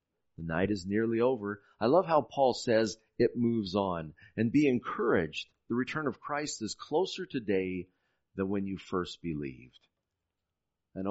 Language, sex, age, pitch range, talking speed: English, male, 40-59, 95-125 Hz, 155 wpm